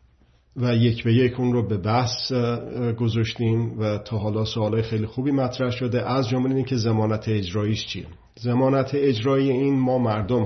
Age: 50-69